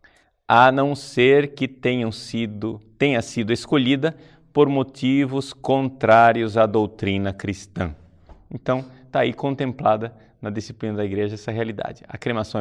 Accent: Brazilian